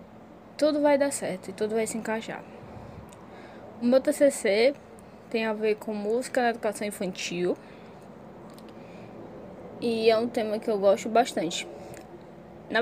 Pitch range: 200-240 Hz